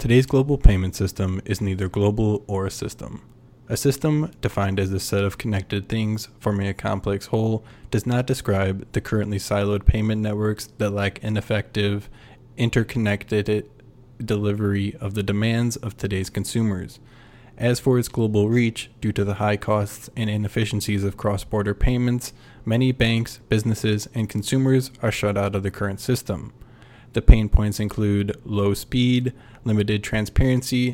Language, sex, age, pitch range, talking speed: English, male, 20-39, 105-125 Hz, 150 wpm